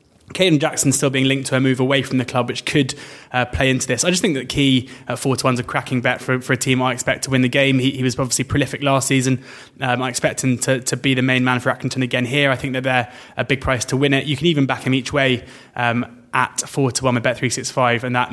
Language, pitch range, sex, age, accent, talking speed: English, 125-135 Hz, male, 20-39, British, 295 wpm